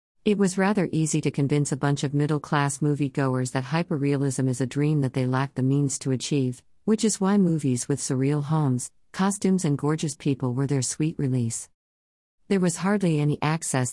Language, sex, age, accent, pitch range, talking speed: English, female, 50-69, American, 130-160 Hz, 185 wpm